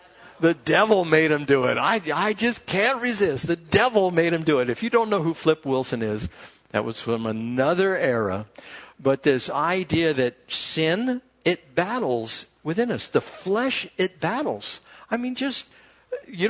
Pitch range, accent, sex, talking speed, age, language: 120-195 Hz, American, male, 170 wpm, 60-79, English